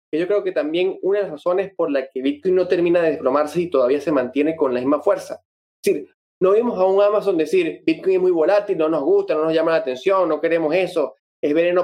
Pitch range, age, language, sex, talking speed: 160-225 Hz, 20-39, Spanish, male, 255 wpm